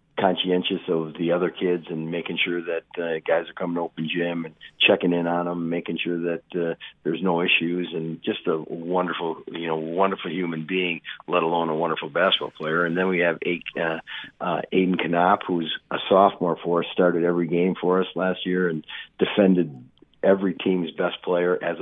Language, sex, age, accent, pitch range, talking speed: English, male, 50-69, American, 85-95 Hz, 195 wpm